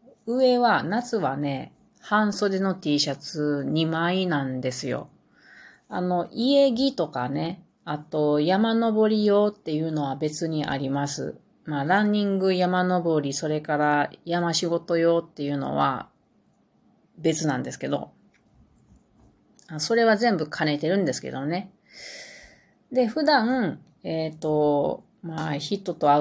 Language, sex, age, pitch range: Japanese, female, 30-49, 150-205 Hz